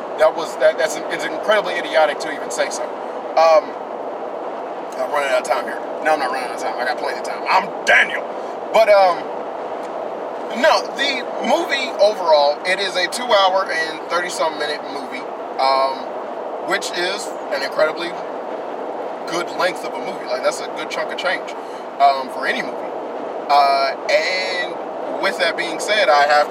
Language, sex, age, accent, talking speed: English, male, 30-49, American, 170 wpm